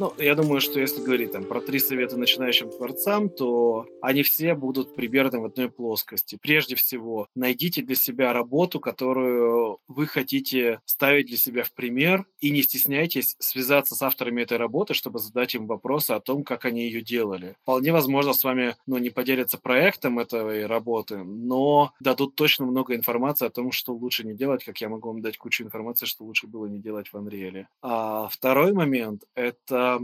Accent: native